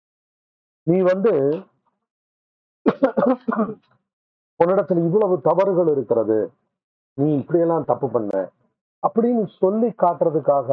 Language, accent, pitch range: Tamil, native, 115-165 Hz